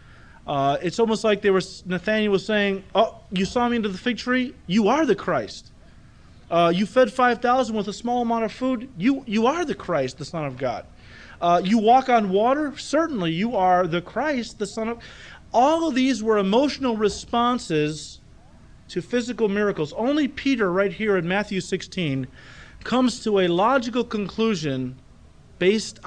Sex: male